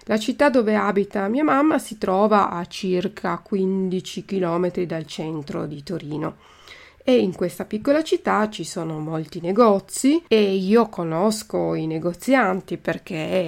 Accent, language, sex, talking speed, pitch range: native, Italian, female, 140 wpm, 175-220 Hz